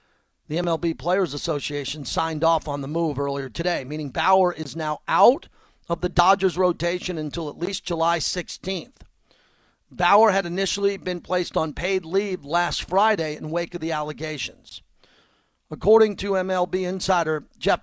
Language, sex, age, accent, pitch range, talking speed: English, male, 50-69, American, 155-190 Hz, 150 wpm